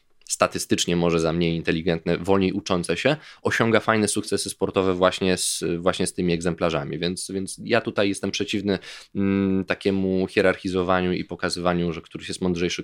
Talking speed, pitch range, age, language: 145 wpm, 90-105 Hz, 20-39, Polish